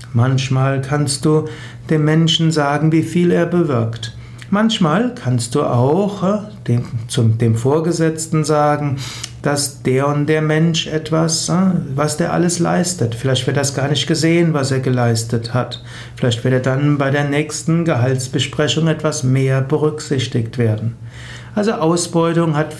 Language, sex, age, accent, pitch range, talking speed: German, male, 60-79, German, 125-160 Hz, 135 wpm